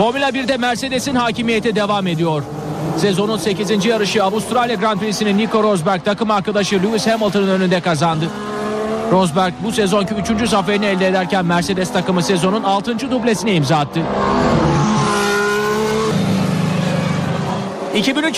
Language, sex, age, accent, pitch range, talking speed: Turkish, male, 40-59, native, 185-225 Hz, 115 wpm